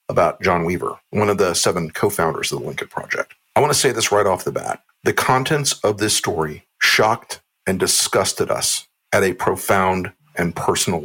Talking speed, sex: 190 wpm, male